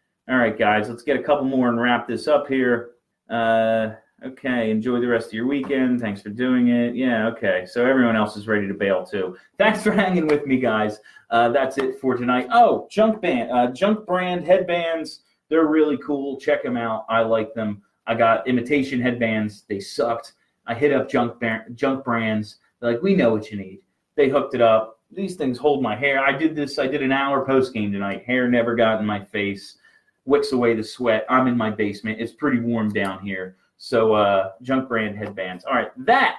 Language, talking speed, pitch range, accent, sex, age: English, 210 wpm, 115-150 Hz, American, male, 30-49